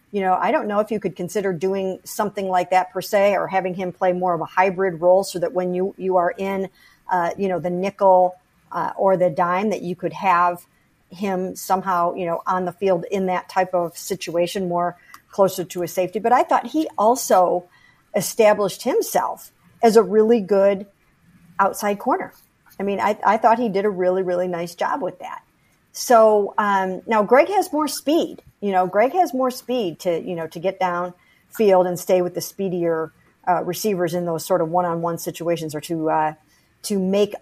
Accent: American